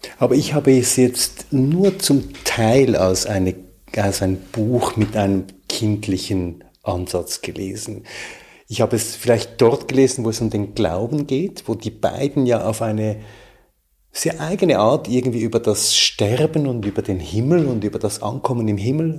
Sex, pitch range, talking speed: male, 100-130 Hz, 160 wpm